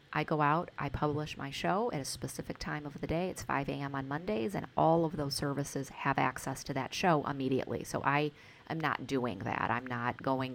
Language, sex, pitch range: English, female, 130-150 Hz